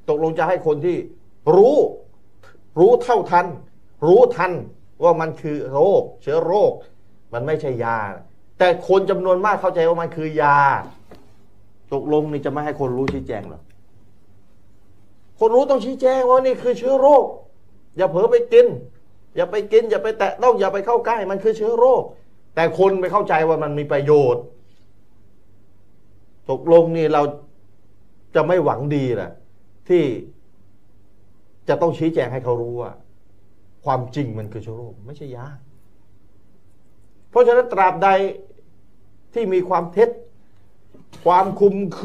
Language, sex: Thai, male